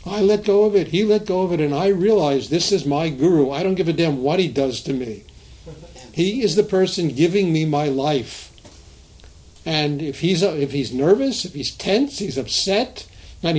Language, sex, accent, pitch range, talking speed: English, male, American, 140-180 Hz, 210 wpm